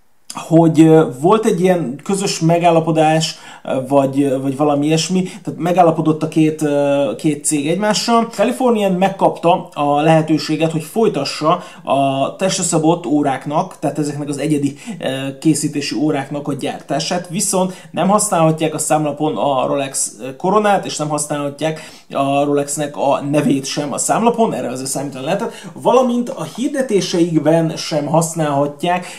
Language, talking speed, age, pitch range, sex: Hungarian, 125 wpm, 30-49, 140-175 Hz, male